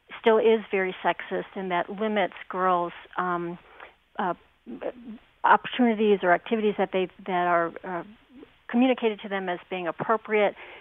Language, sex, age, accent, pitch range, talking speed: English, female, 40-59, American, 180-220 Hz, 130 wpm